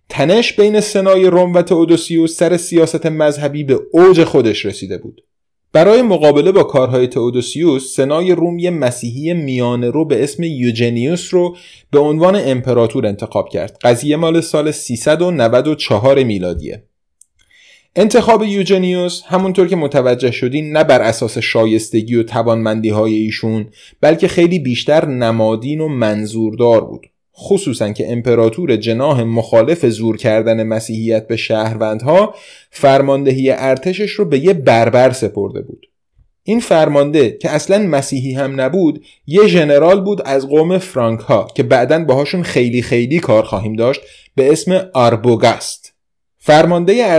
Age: 30-49